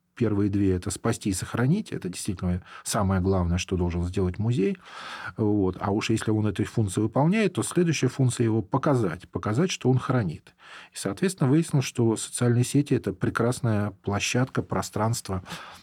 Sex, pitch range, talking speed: male, 95-120 Hz, 150 wpm